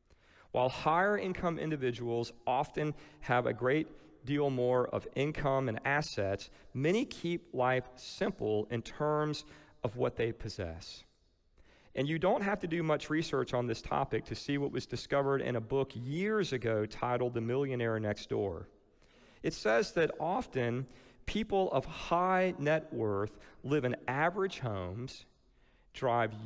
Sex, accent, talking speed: male, American, 145 wpm